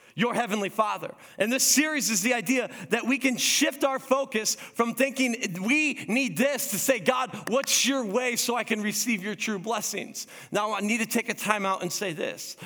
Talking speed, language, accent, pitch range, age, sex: 210 wpm, English, American, 195-265 Hz, 30-49, male